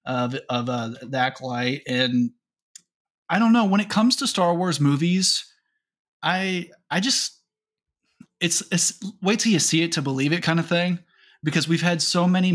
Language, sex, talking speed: English, male, 175 wpm